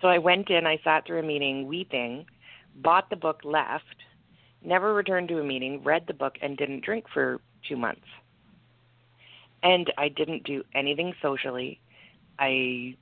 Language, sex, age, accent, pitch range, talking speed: English, female, 40-59, American, 125-155 Hz, 160 wpm